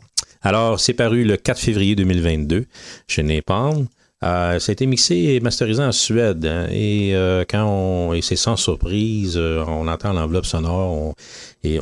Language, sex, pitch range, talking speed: English, male, 80-110 Hz, 175 wpm